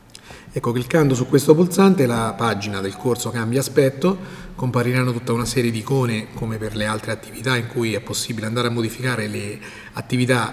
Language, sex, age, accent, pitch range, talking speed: Italian, male, 30-49, native, 120-150 Hz, 175 wpm